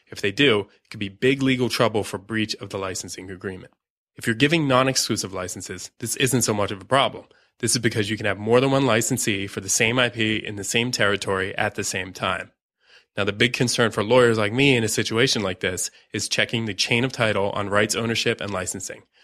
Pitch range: 100-125 Hz